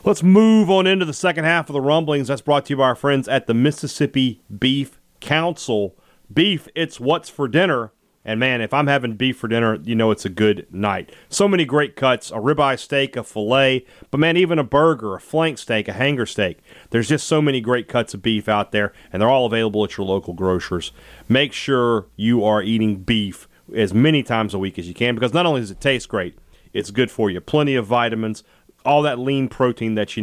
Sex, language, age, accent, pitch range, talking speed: male, English, 40-59, American, 110-145 Hz, 225 wpm